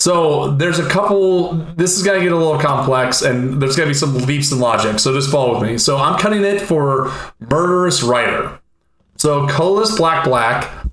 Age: 30-49